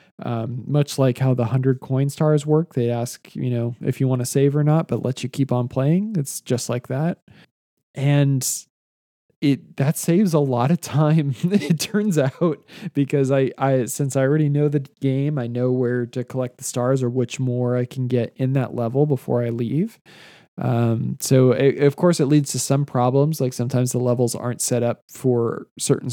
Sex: male